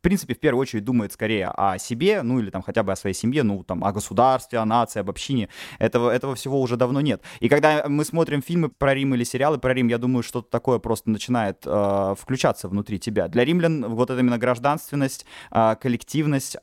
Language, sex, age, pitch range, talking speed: Russian, male, 20-39, 115-150 Hz, 215 wpm